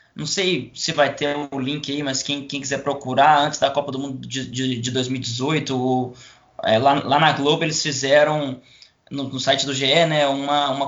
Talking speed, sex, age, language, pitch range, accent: 215 wpm, male, 20-39, Portuguese, 135-155 Hz, Brazilian